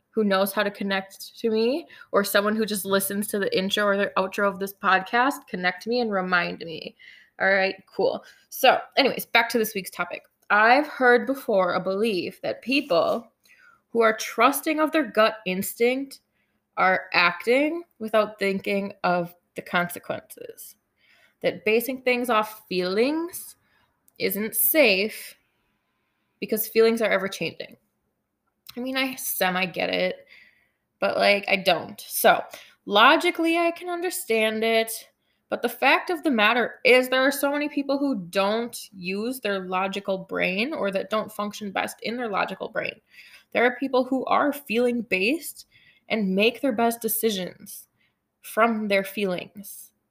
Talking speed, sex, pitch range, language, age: 150 wpm, female, 195-255 Hz, English, 20-39